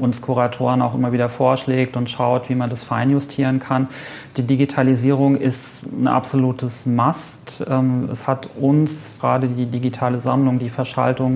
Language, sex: German, male